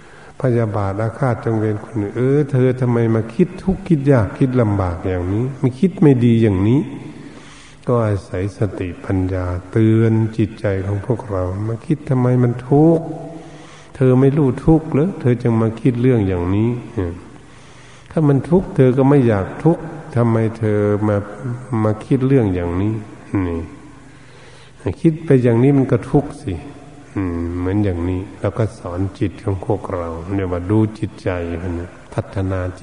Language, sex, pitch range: Thai, male, 100-135 Hz